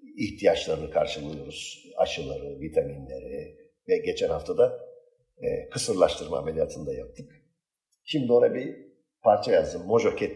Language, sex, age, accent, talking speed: Turkish, male, 50-69, native, 110 wpm